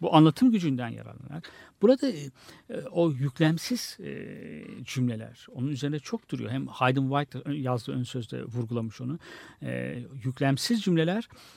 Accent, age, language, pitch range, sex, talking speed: native, 60-79, Turkish, 120-165 Hz, male, 130 wpm